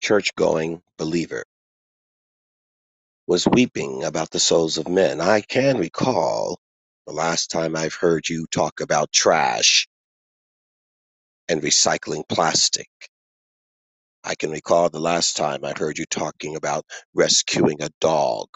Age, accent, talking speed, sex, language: 40-59, American, 125 wpm, male, English